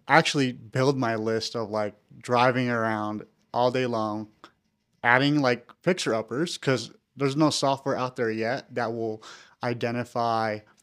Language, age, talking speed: English, 30-49, 140 wpm